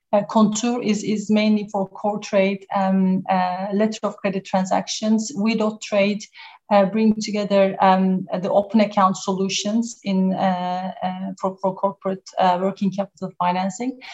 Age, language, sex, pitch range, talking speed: 30-49, English, female, 185-215 Hz, 145 wpm